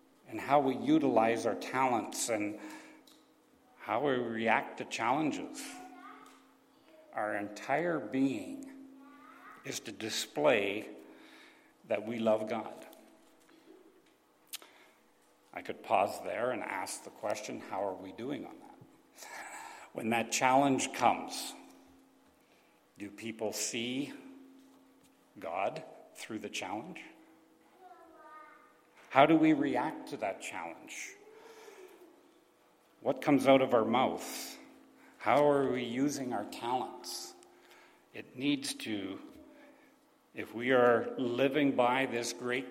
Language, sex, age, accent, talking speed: English, male, 60-79, American, 105 wpm